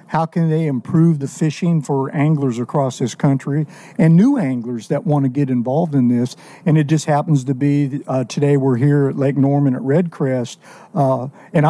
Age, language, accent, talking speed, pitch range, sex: 50-69, English, American, 195 wpm, 135-170 Hz, male